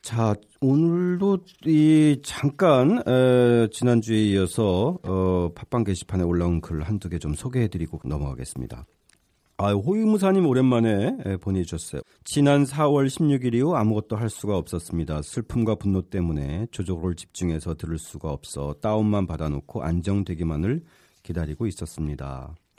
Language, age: Korean, 40-59